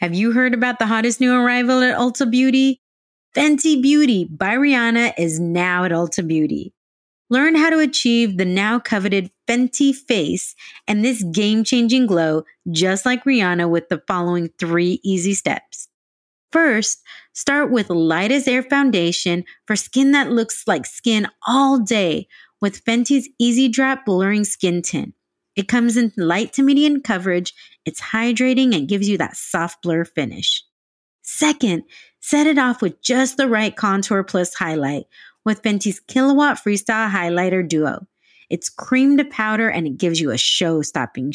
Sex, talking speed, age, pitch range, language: female, 155 wpm, 30-49, 180-255 Hz, English